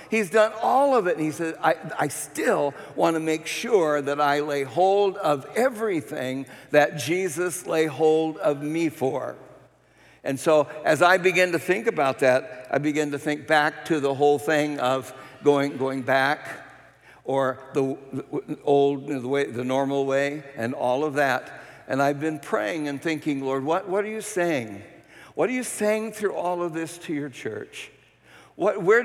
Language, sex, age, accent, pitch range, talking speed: English, male, 60-79, American, 140-180 Hz, 185 wpm